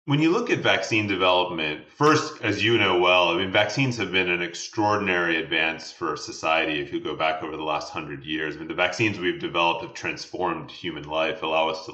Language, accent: English, American